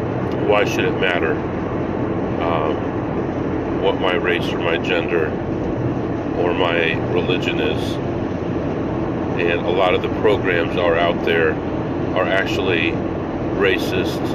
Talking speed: 115 wpm